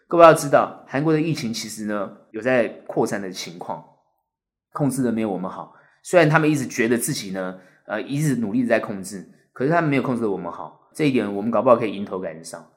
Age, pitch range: 20-39, 110-145 Hz